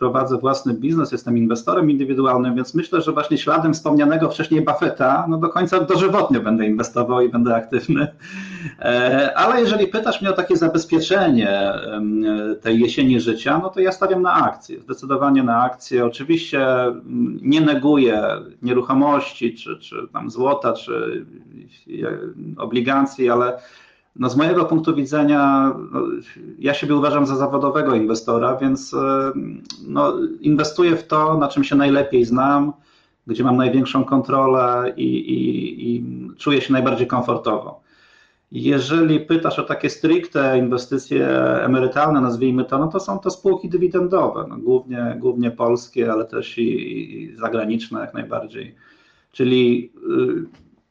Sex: male